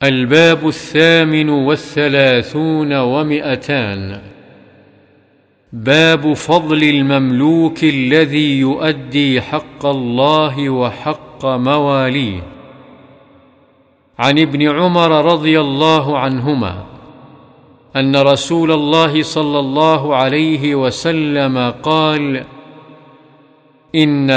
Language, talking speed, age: Arabic, 70 wpm, 50-69